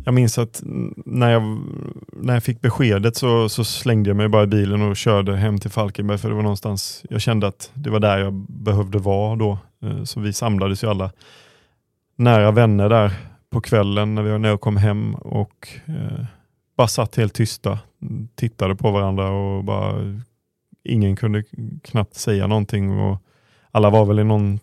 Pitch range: 105-120 Hz